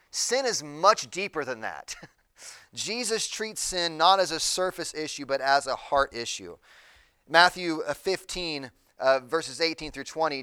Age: 30-49